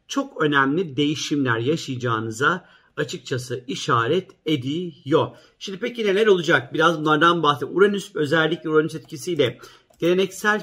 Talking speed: 105 wpm